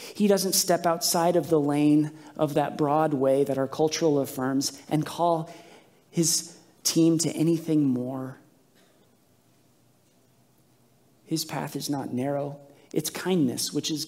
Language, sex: English, male